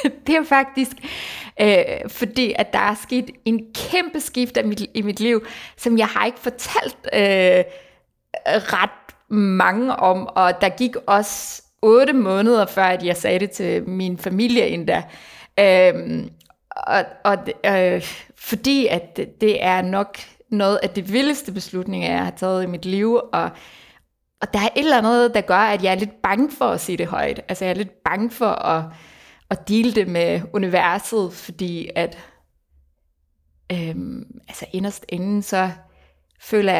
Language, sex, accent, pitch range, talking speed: Danish, female, native, 170-225 Hz, 150 wpm